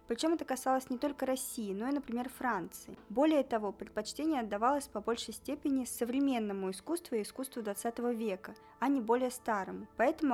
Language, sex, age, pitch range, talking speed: Russian, female, 20-39, 210-255 Hz, 165 wpm